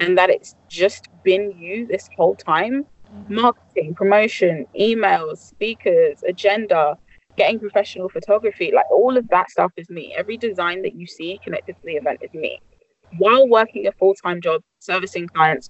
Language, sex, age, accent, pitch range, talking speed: English, female, 20-39, British, 170-235 Hz, 160 wpm